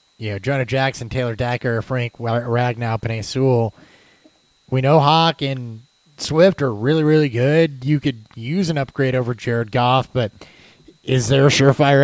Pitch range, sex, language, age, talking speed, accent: 115-145 Hz, male, English, 20-39, 160 wpm, American